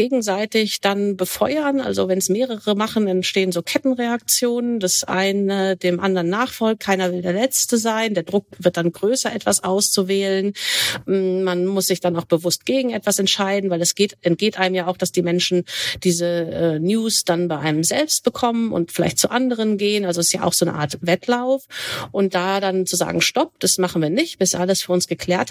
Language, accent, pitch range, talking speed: German, German, 175-220 Hz, 195 wpm